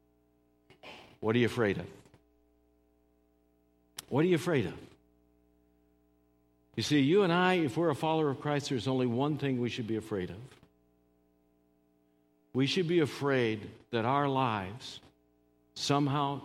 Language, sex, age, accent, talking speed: English, male, 60-79, American, 140 wpm